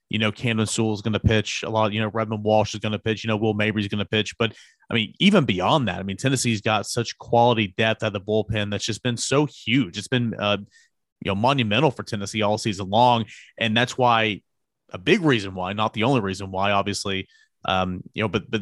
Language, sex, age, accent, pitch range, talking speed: English, male, 30-49, American, 105-120 Hz, 250 wpm